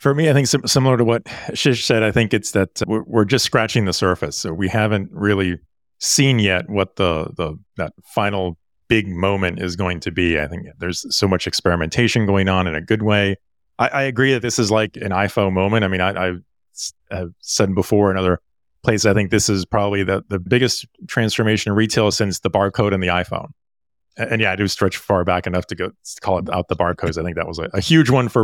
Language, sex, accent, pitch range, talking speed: English, male, American, 95-120 Hz, 230 wpm